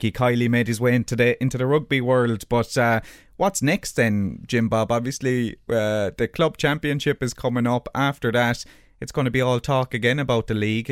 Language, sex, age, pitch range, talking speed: English, male, 20-39, 100-125 Hz, 205 wpm